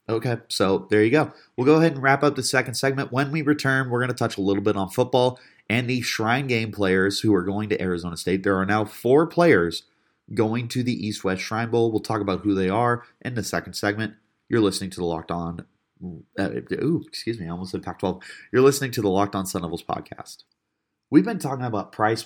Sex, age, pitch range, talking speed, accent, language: male, 30-49, 100-130 Hz, 230 wpm, American, English